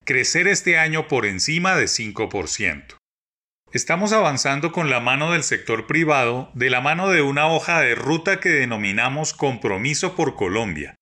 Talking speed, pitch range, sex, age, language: 150 wpm, 125-170 Hz, male, 30-49, Spanish